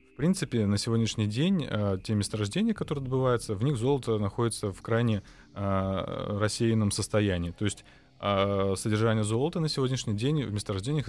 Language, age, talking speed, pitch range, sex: Russian, 20-39, 140 wpm, 100-115 Hz, male